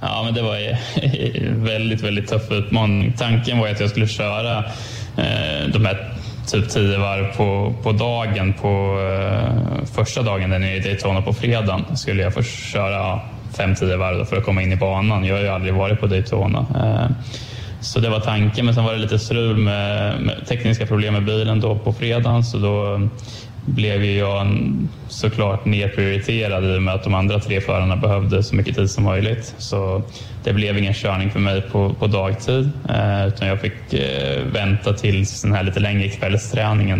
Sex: male